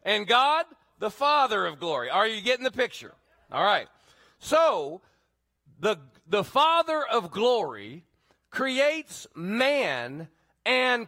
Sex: male